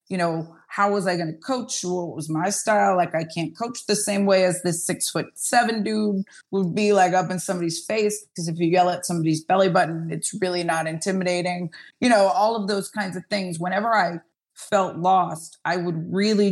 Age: 30-49